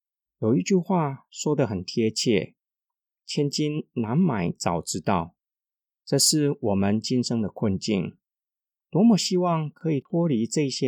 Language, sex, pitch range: Chinese, male, 115-155 Hz